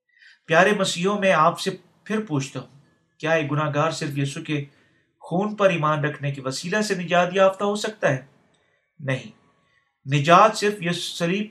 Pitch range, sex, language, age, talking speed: 155-195 Hz, male, Urdu, 50-69, 160 wpm